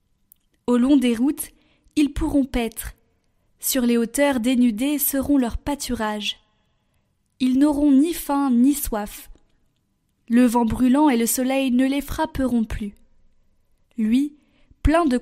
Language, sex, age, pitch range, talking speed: French, female, 20-39, 240-285 Hz, 130 wpm